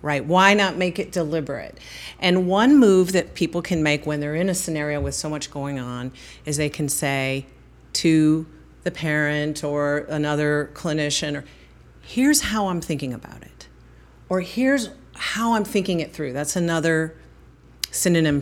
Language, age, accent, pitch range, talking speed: English, 40-59, American, 160-215 Hz, 160 wpm